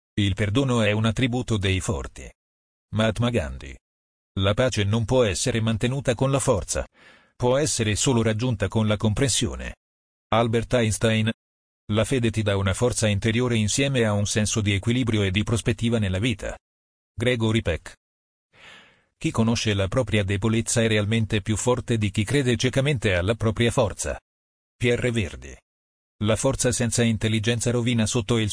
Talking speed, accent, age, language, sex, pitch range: 150 wpm, native, 40-59, Italian, male, 95-120 Hz